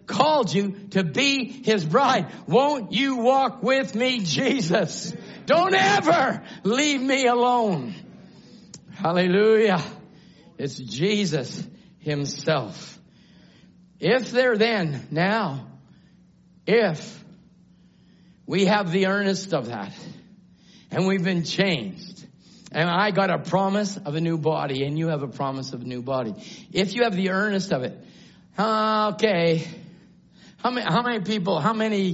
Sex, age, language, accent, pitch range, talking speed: male, 50-69, English, American, 175-220 Hz, 130 wpm